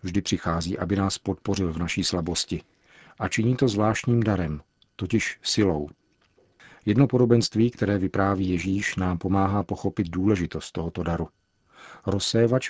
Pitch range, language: 90-105 Hz, Czech